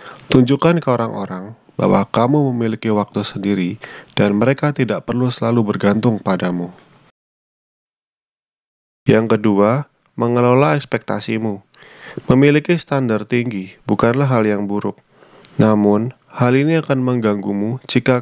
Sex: male